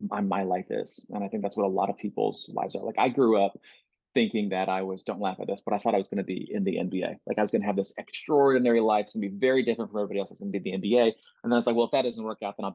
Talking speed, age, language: 350 wpm, 30-49, English